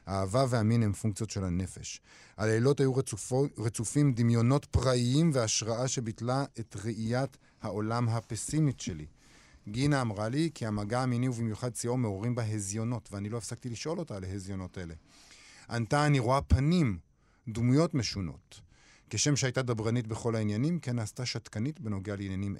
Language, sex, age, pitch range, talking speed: Hebrew, male, 50-69, 110-135 Hz, 145 wpm